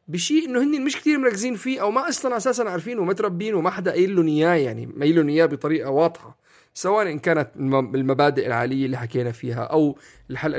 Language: Arabic